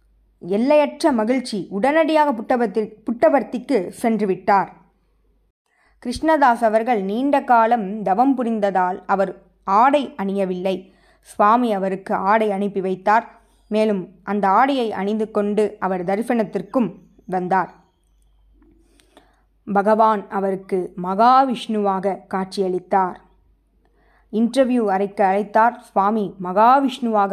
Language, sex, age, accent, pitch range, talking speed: Tamil, female, 20-39, native, 195-240 Hz, 85 wpm